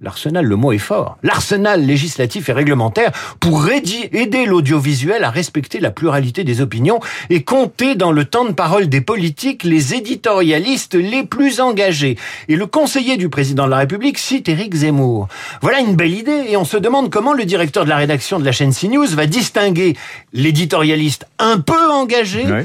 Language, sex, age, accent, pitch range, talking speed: French, male, 50-69, French, 130-190 Hz, 180 wpm